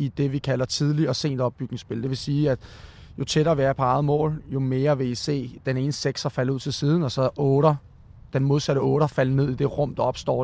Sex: male